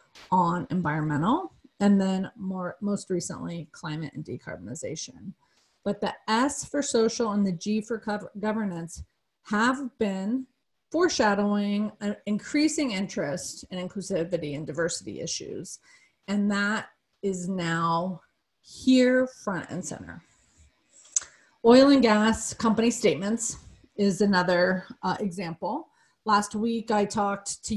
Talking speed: 115 wpm